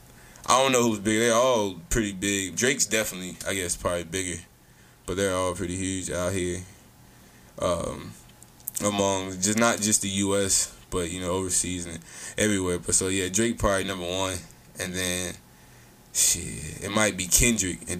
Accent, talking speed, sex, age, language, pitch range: American, 165 wpm, male, 20-39, English, 90-110 Hz